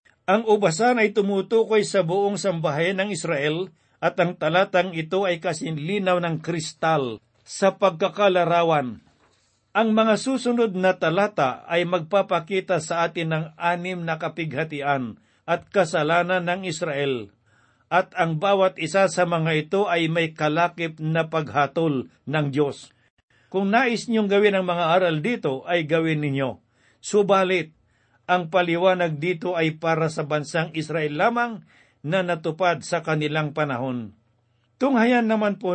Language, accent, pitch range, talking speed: Filipino, native, 150-190 Hz, 135 wpm